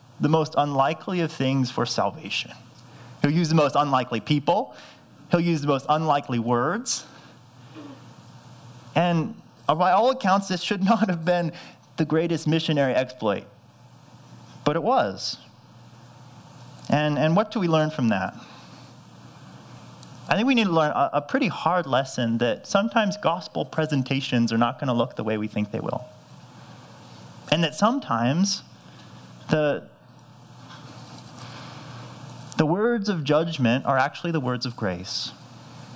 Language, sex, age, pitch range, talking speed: English, male, 30-49, 125-170 Hz, 140 wpm